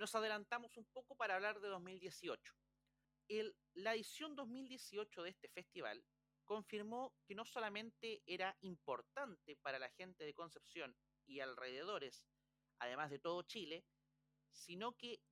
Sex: male